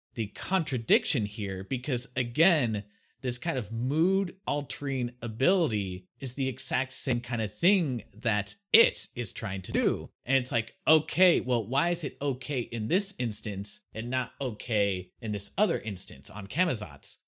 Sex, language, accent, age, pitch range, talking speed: male, English, American, 30-49, 110-150 Hz, 155 wpm